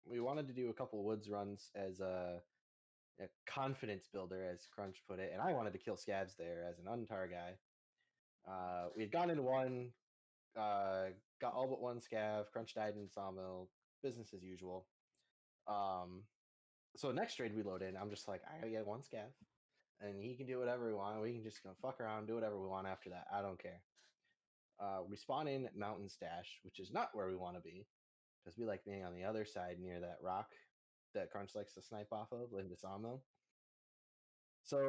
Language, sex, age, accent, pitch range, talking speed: English, male, 20-39, American, 95-120 Hz, 215 wpm